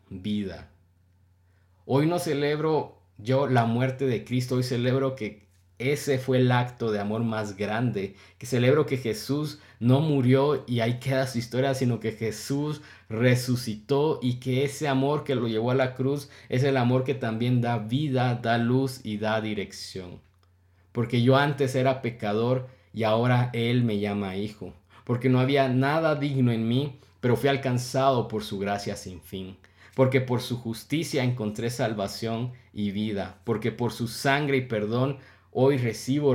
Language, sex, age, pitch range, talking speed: Spanish, male, 50-69, 105-130 Hz, 165 wpm